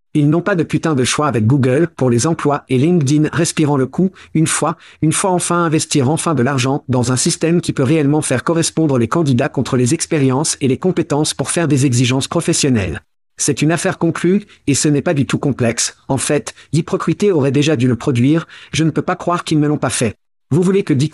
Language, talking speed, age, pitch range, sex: French, 225 wpm, 50-69, 135-165 Hz, male